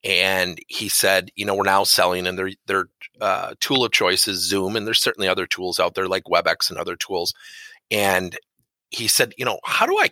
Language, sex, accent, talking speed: English, male, American, 220 wpm